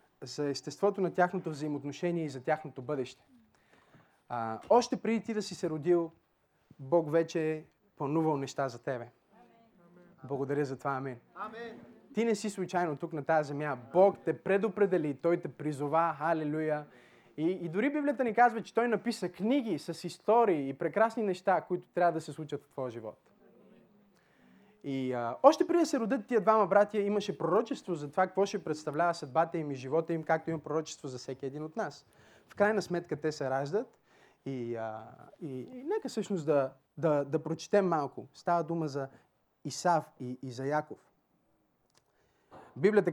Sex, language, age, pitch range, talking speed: male, Bulgarian, 20-39, 145-195 Hz, 170 wpm